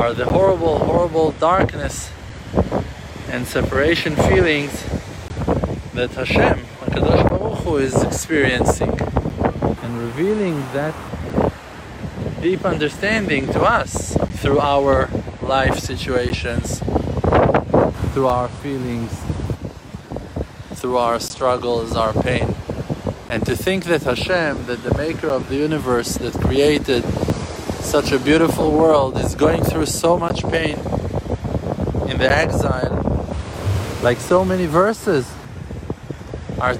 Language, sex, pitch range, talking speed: English, male, 105-140 Hz, 105 wpm